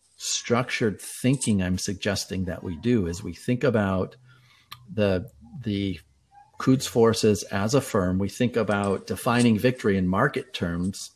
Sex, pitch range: male, 95-120 Hz